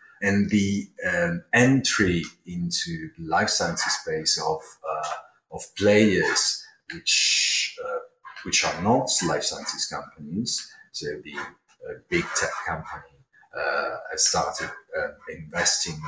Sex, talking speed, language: male, 120 wpm, English